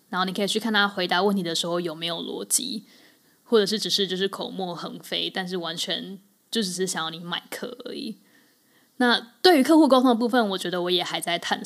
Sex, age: female, 10-29